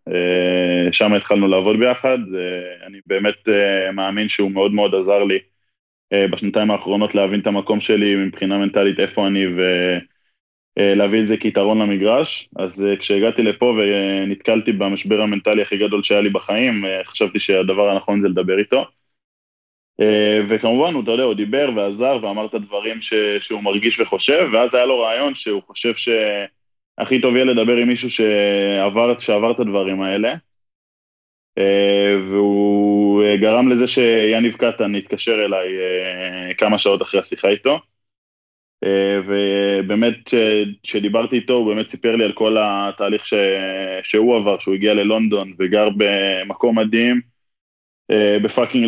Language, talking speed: Hebrew, 130 wpm